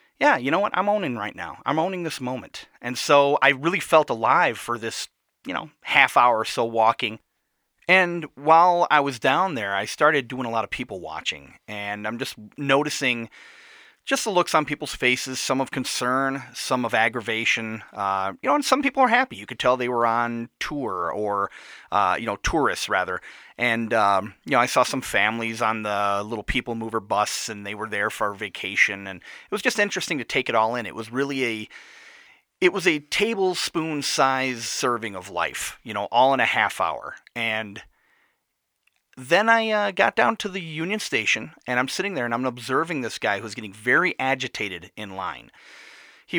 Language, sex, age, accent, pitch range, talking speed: English, male, 30-49, American, 110-155 Hz, 200 wpm